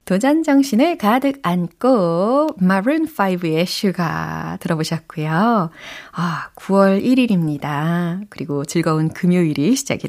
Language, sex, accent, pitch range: Korean, female, native, 155-225 Hz